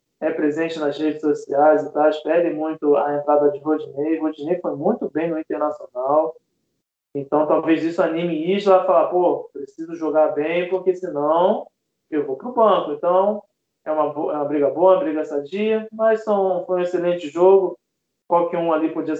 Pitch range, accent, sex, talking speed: 150-190 Hz, Brazilian, male, 175 wpm